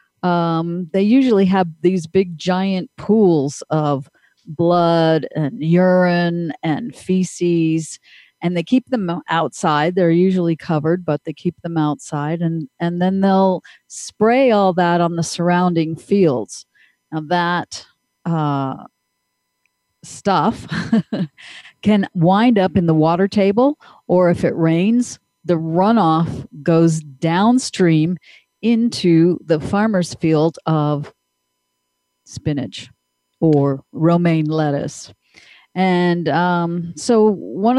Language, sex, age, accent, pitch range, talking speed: English, female, 50-69, American, 165-190 Hz, 110 wpm